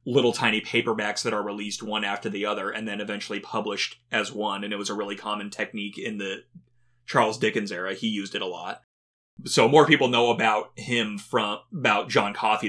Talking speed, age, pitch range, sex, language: 205 wpm, 30-49, 105-120 Hz, male, English